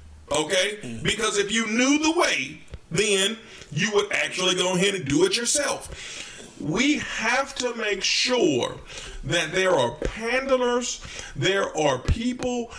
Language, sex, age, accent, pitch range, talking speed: English, male, 40-59, American, 145-215 Hz, 135 wpm